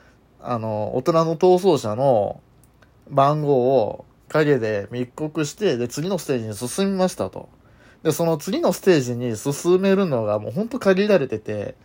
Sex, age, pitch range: male, 20-39, 125-190 Hz